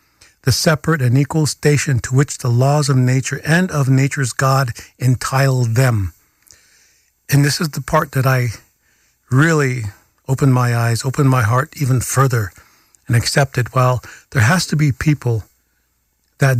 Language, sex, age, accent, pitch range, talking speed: English, male, 50-69, American, 120-140 Hz, 150 wpm